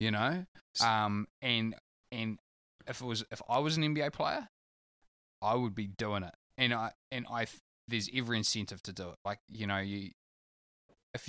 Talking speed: 180 wpm